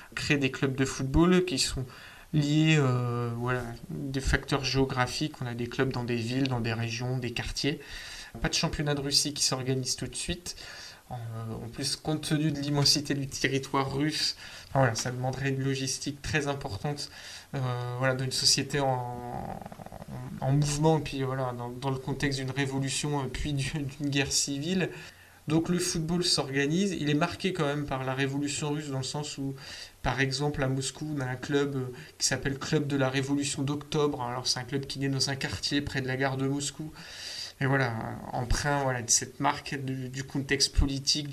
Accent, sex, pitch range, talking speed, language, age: French, male, 130-145 Hz, 195 wpm, French, 20-39